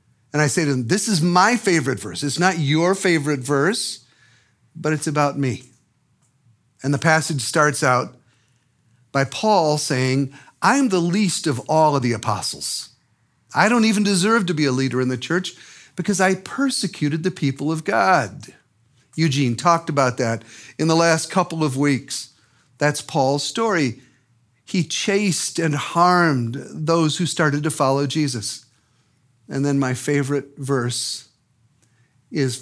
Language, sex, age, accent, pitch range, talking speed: English, male, 50-69, American, 130-170 Hz, 150 wpm